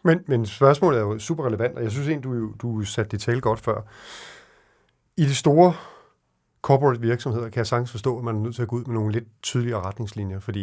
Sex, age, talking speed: male, 40-59, 230 wpm